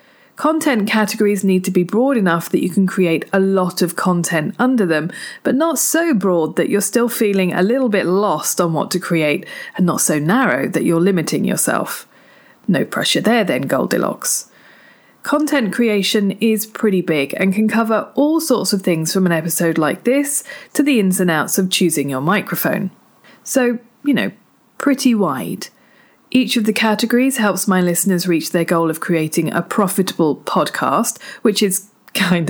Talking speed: 175 wpm